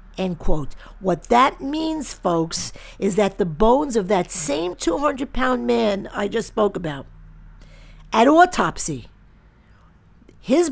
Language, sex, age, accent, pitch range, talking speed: English, female, 50-69, American, 160-225 Hz, 125 wpm